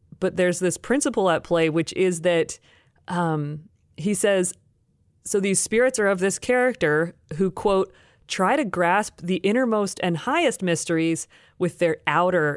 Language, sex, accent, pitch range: English, female, American, 160-195 Hz